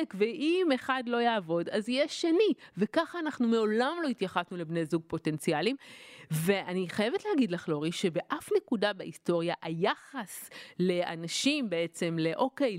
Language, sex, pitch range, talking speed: Hebrew, female, 180-275 Hz, 125 wpm